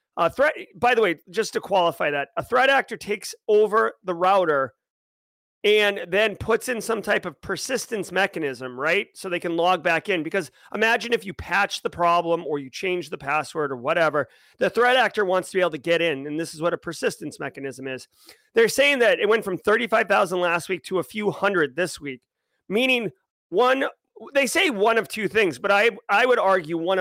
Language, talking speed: English, 200 wpm